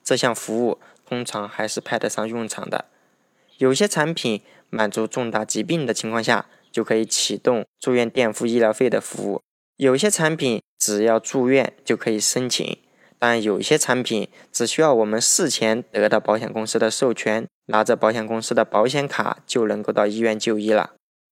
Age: 20-39